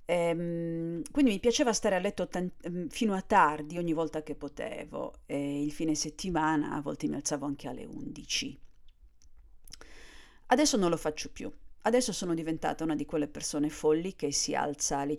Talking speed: 160 wpm